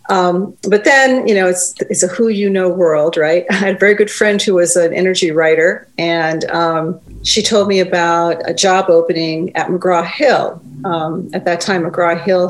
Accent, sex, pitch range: American, female, 165-195 Hz